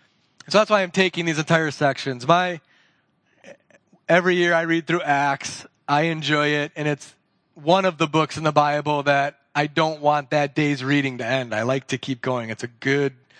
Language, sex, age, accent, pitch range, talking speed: English, male, 30-49, American, 150-185 Hz, 195 wpm